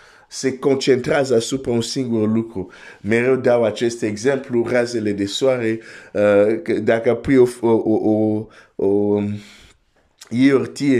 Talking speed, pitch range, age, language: 110 wpm, 110-135 Hz, 50-69, Romanian